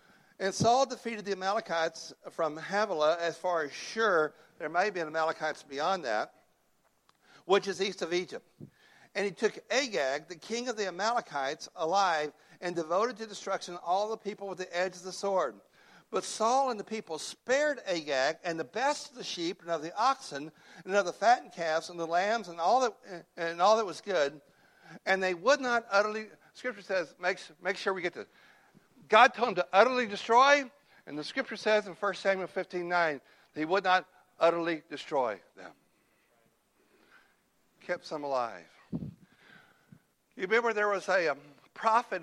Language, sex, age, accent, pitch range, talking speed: English, male, 60-79, American, 160-205 Hz, 170 wpm